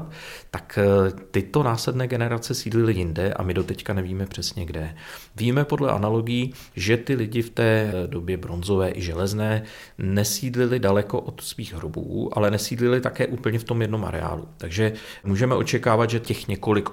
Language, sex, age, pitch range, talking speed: Czech, male, 40-59, 95-115 Hz, 155 wpm